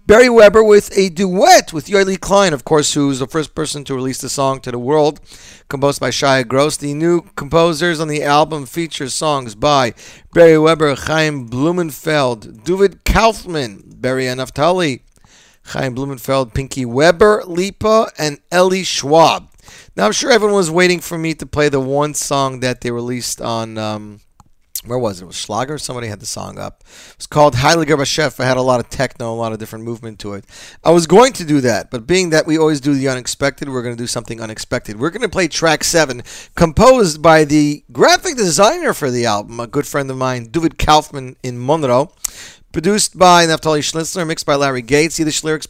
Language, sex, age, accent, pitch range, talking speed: English, male, 40-59, American, 130-180 Hz, 195 wpm